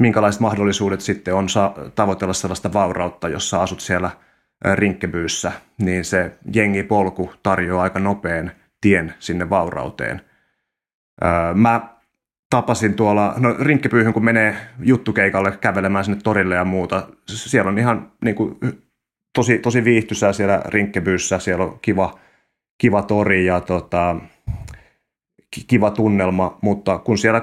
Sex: male